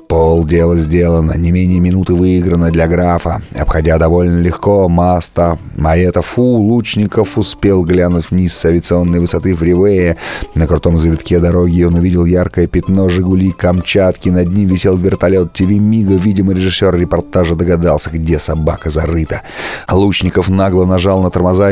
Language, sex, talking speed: Russian, male, 140 wpm